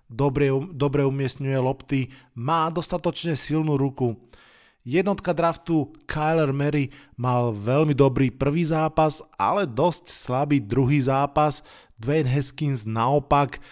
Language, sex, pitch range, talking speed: Slovak, male, 125-145 Hz, 110 wpm